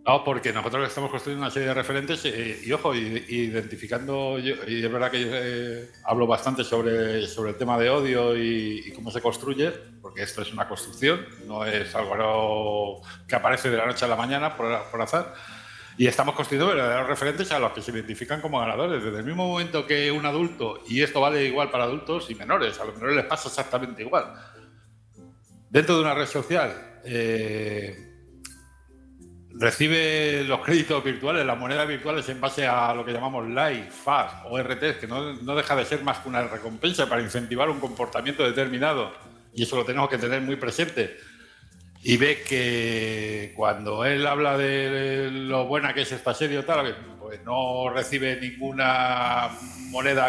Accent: Spanish